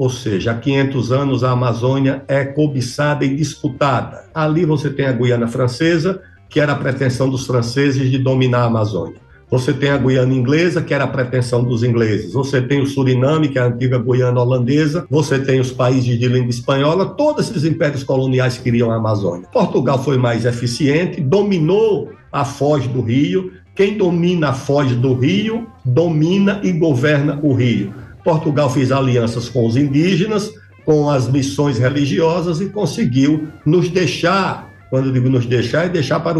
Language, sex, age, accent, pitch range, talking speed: Portuguese, male, 60-79, Brazilian, 125-155 Hz, 175 wpm